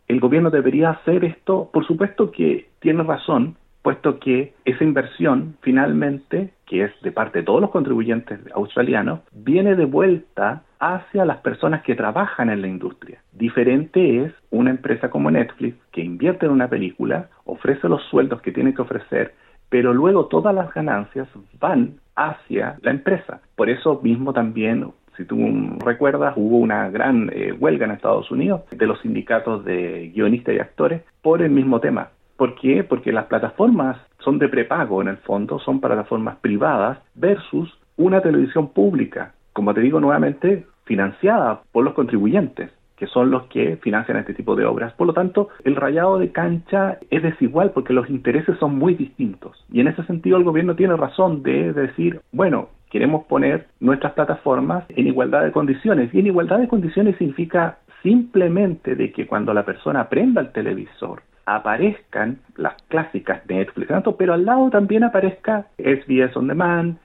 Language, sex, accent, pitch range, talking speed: Spanish, male, Venezuelan, 130-185 Hz, 165 wpm